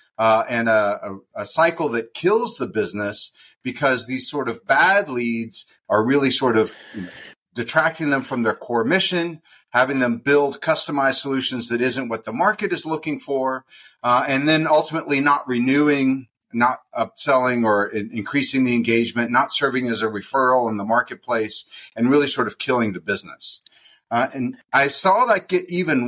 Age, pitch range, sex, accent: 40-59, 120-160 Hz, male, American